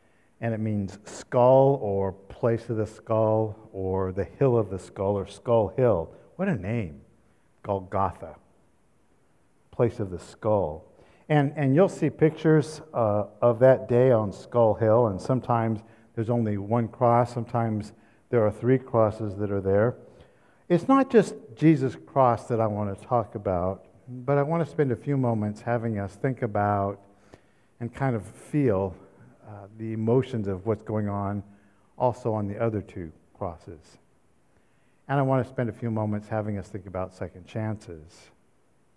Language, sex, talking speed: English, male, 165 wpm